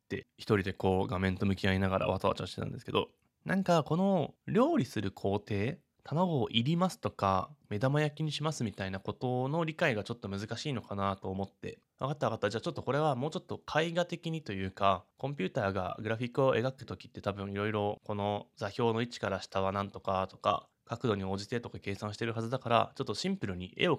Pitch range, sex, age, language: 100-155 Hz, male, 20-39, Japanese